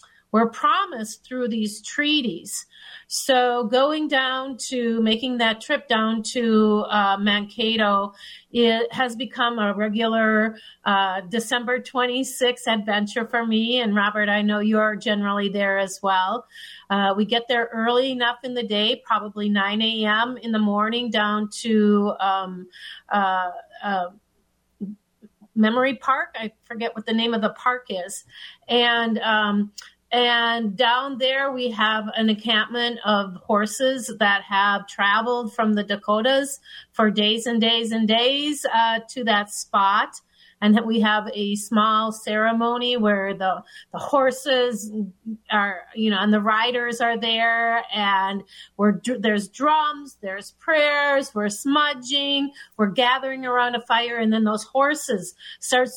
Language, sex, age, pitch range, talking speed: English, female, 40-59, 210-245 Hz, 140 wpm